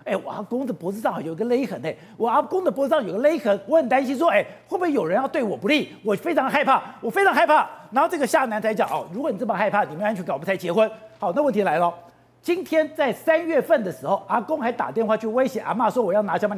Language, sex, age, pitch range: Chinese, male, 50-69, 215-315 Hz